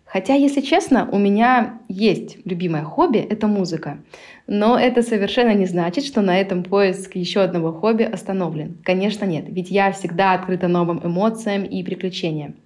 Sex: female